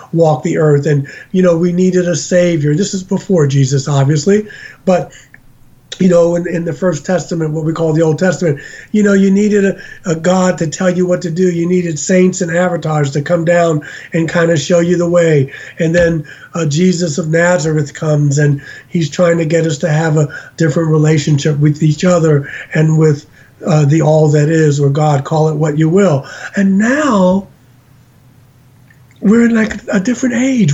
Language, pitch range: English, 150-195 Hz